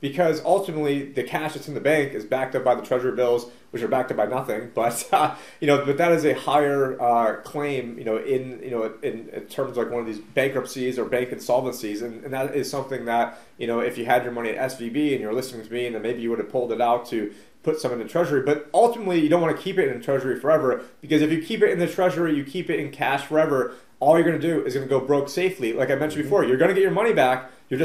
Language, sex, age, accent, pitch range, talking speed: English, male, 30-49, American, 120-150 Hz, 280 wpm